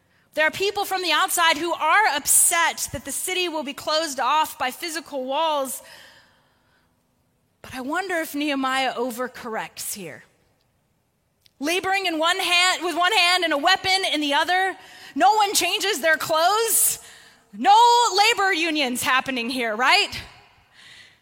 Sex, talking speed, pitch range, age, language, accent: female, 140 wpm, 255-345 Hz, 20-39, English, American